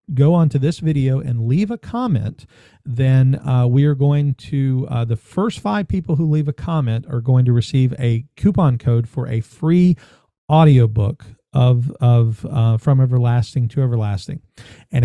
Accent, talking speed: American, 170 wpm